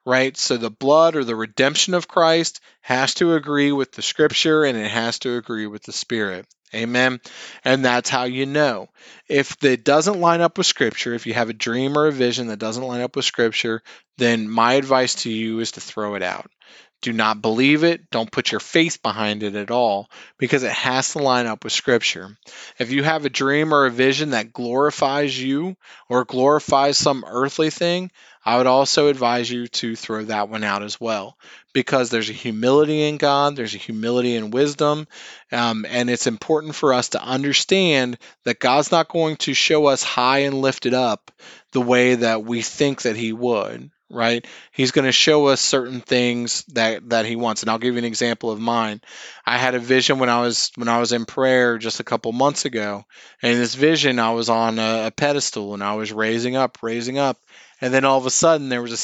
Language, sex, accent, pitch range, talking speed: English, male, American, 115-140 Hz, 210 wpm